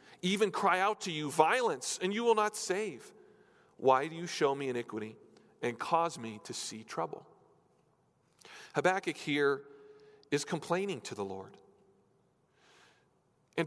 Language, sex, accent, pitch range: English, male, American, 140-205 Hz